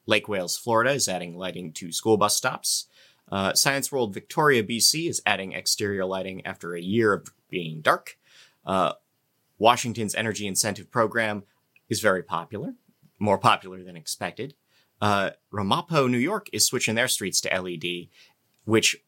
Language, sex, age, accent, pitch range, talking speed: English, male, 30-49, American, 95-135 Hz, 150 wpm